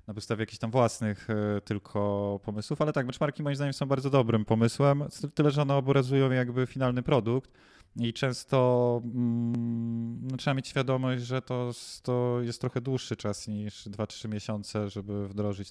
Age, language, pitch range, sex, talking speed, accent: 20-39, Polish, 110-130 Hz, male, 155 wpm, native